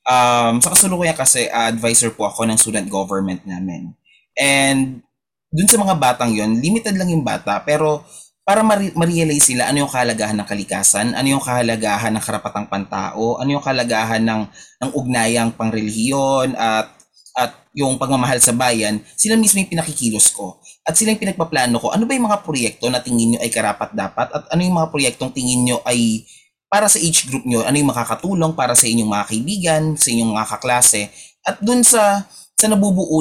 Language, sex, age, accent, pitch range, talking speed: Filipino, male, 20-39, native, 115-165 Hz, 185 wpm